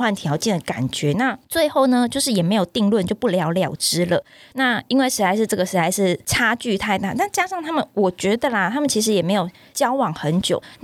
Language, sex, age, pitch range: Chinese, female, 20-39, 175-245 Hz